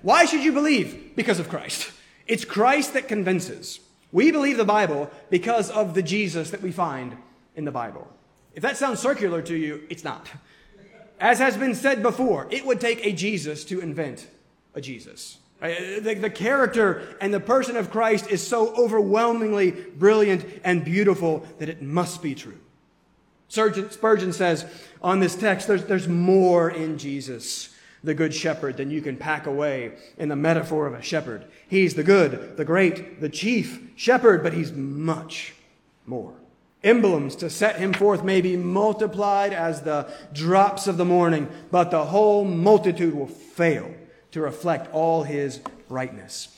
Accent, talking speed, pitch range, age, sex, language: American, 165 wpm, 160-210 Hz, 30-49, male, English